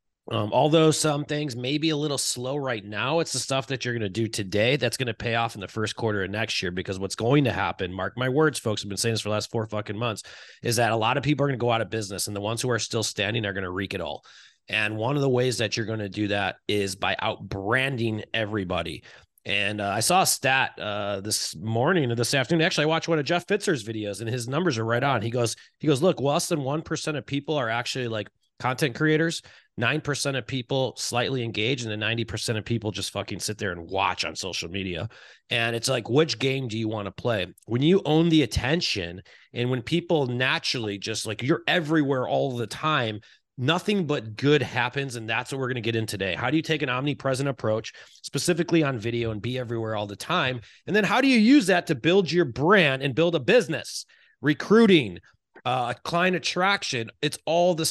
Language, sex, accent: English, male, American